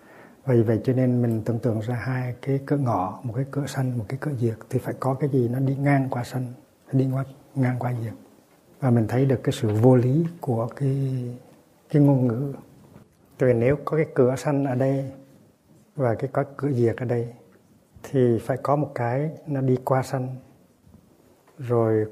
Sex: male